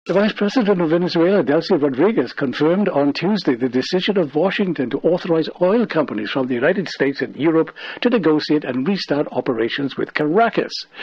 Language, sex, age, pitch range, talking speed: English, male, 60-79, 140-185 Hz, 170 wpm